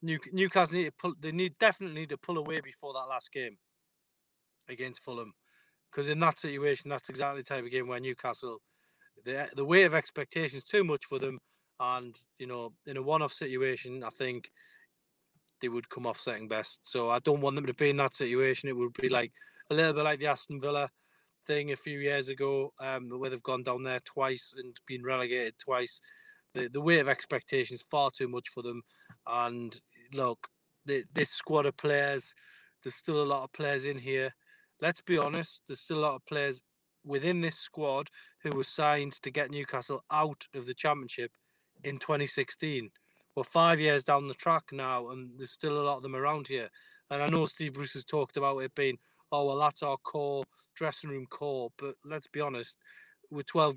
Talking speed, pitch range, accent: 200 wpm, 130-155 Hz, British